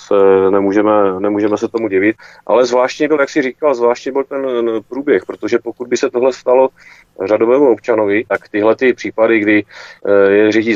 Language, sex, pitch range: Czech, male, 105-130 Hz